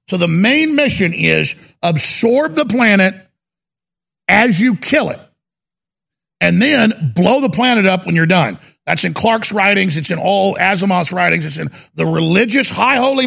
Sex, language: male, English